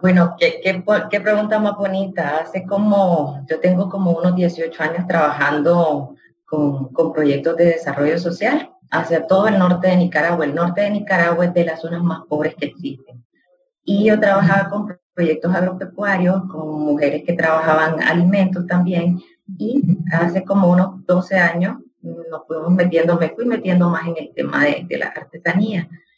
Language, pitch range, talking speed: English, 165-195 Hz, 165 wpm